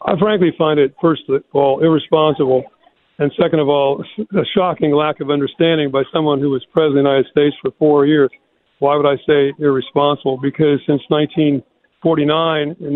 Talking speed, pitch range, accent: 170 wpm, 140-160 Hz, American